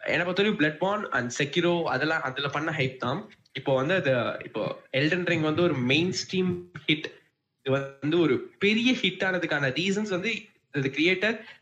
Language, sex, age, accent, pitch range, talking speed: Tamil, male, 10-29, native, 135-180 Hz, 60 wpm